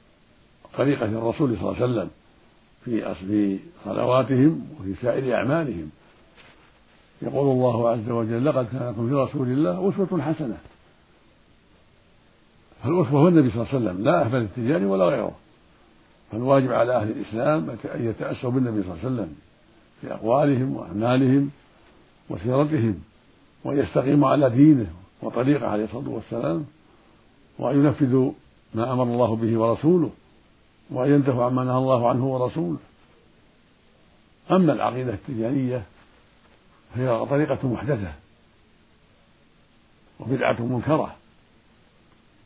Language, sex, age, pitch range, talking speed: Arabic, male, 60-79, 115-140 Hz, 110 wpm